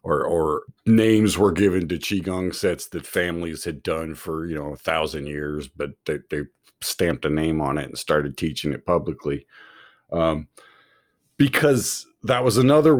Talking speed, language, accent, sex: 165 wpm, English, American, male